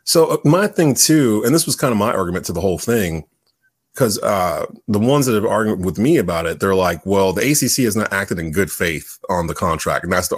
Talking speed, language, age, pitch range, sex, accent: 250 wpm, English, 30-49, 95-140 Hz, male, American